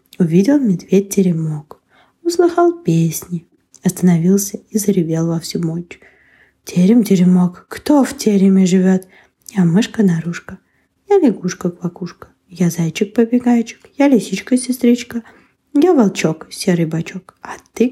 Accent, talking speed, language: native, 95 wpm, Ukrainian